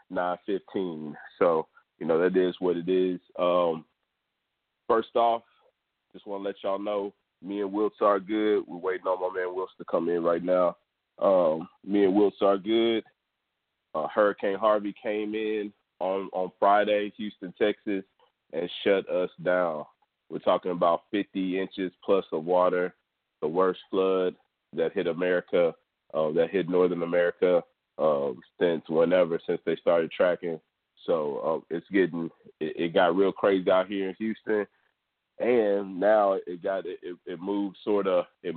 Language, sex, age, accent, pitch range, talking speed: English, male, 30-49, American, 90-105 Hz, 160 wpm